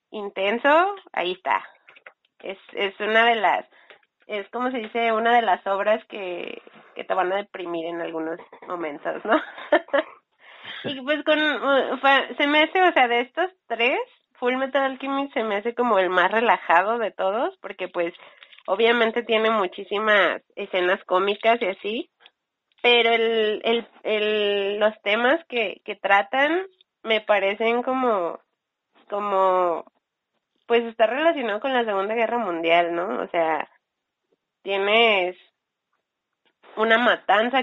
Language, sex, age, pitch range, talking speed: Spanish, female, 30-49, 195-250 Hz, 135 wpm